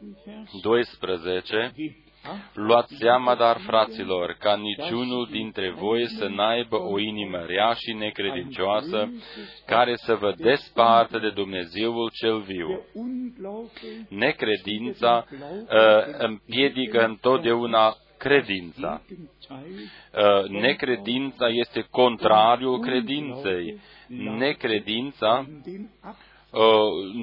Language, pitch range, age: Romanian, 110-135 Hz, 40-59